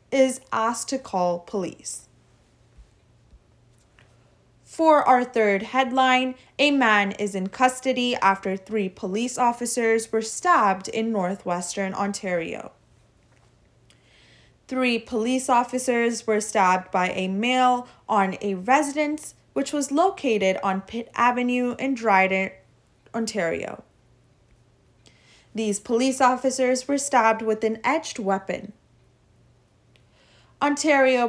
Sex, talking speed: female, 100 wpm